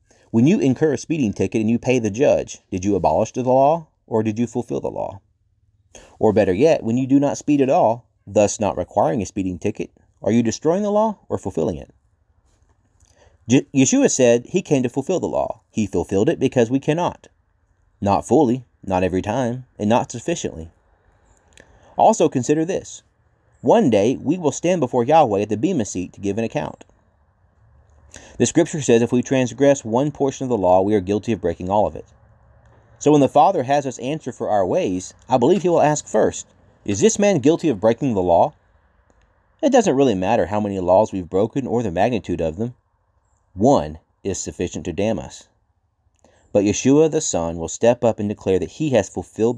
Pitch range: 95-130 Hz